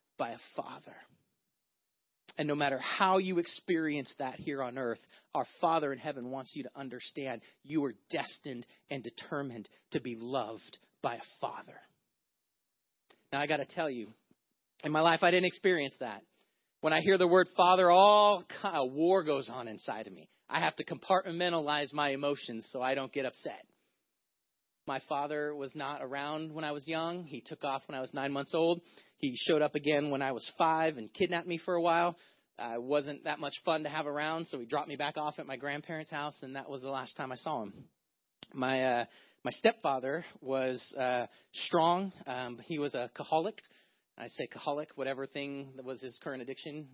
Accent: American